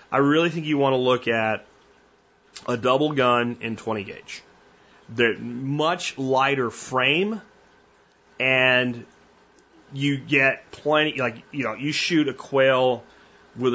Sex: male